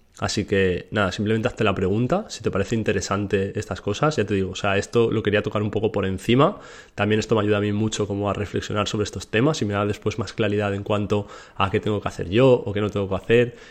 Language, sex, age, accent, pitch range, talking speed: Spanish, male, 20-39, Spanish, 100-110 Hz, 260 wpm